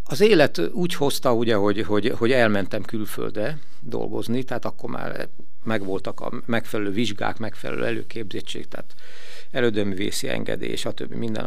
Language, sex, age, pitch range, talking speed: Hungarian, male, 60-79, 105-140 Hz, 140 wpm